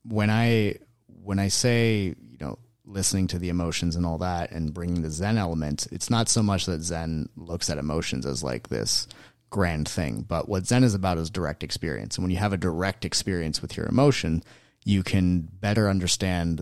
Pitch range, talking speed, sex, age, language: 80-105 Hz, 200 wpm, male, 30-49, English